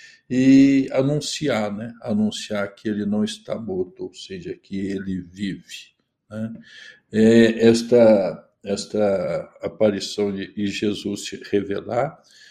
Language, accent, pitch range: Portuguese, Brazilian, 110-155 Hz